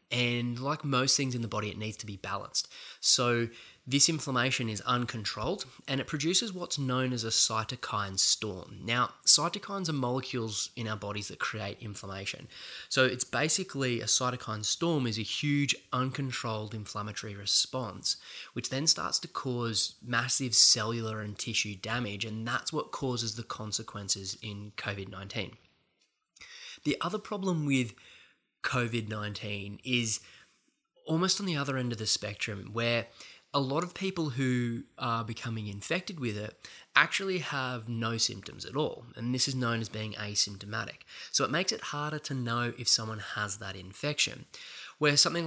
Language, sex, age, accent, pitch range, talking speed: English, male, 20-39, Australian, 110-135 Hz, 155 wpm